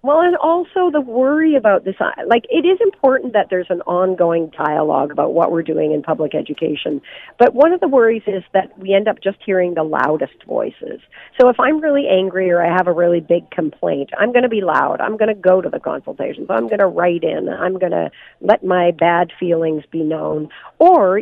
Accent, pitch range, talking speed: American, 170-245 Hz, 220 wpm